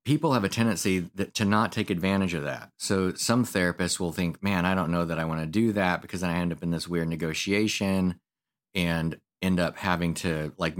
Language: English